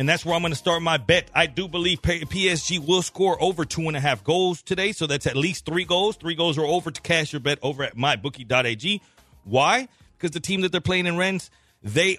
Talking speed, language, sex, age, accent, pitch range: 240 wpm, English, male, 40-59, American, 135-180 Hz